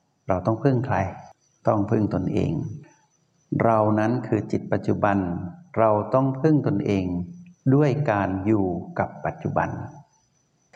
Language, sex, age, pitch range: Thai, male, 60-79, 100-140 Hz